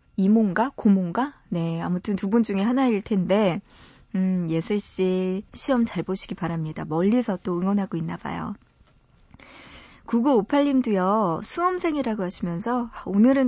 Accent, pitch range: native, 180-245 Hz